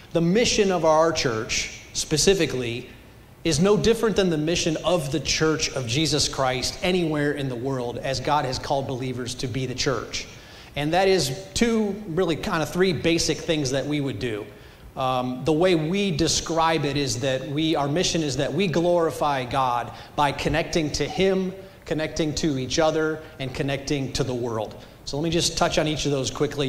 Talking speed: 190 wpm